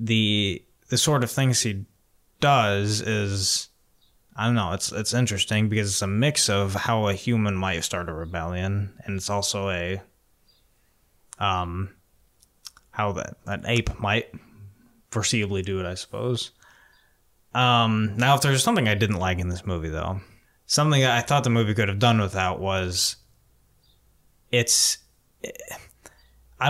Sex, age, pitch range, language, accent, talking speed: male, 20-39, 95-115 Hz, English, American, 150 wpm